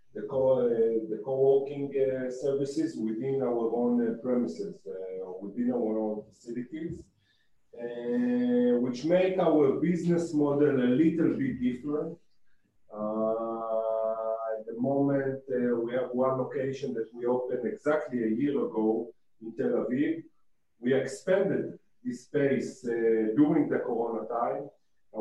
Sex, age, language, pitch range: male, 40-59, English, 115-135 Hz